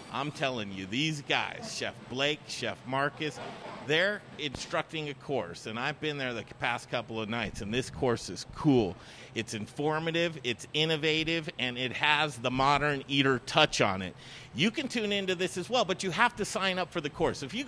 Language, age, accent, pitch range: English, 50-69, American, 135-195 Hz